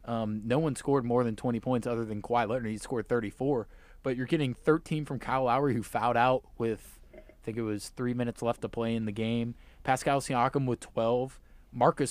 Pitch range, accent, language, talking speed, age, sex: 120-150 Hz, American, English, 215 wpm, 20-39, male